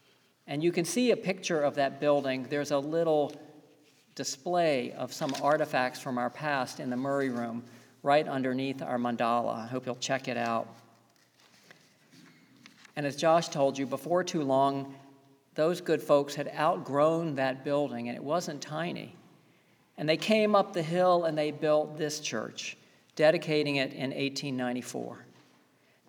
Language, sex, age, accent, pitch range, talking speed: English, male, 50-69, American, 130-155 Hz, 155 wpm